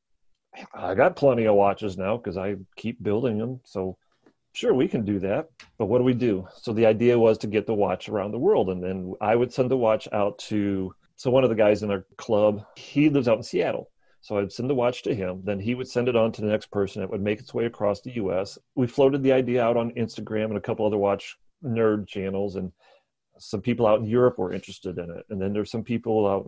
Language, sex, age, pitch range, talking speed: English, male, 40-59, 100-120 Hz, 250 wpm